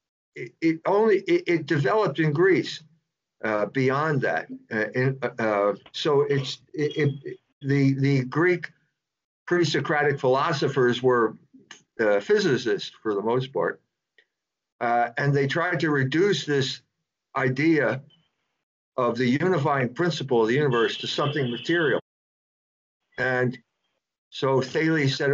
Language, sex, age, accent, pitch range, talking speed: English, male, 50-69, American, 130-165 Hz, 120 wpm